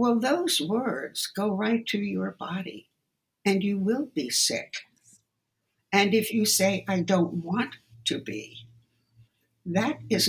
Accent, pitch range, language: American, 155-205 Hz, English